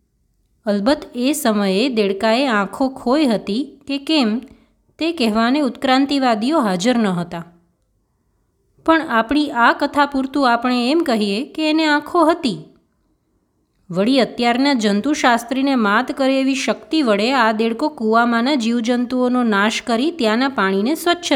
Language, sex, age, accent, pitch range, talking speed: Gujarati, female, 20-39, native, 200-285 Hz, 125 wpm